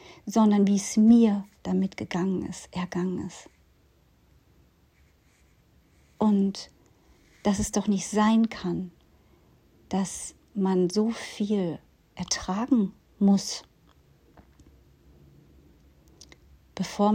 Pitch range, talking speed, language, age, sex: 175-205 Hz, 80 wpm, German, 50-69, female